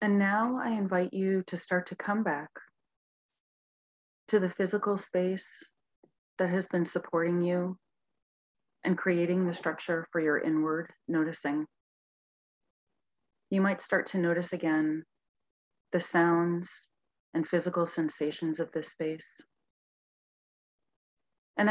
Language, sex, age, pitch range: English, female, 30-49, 165-190 Hz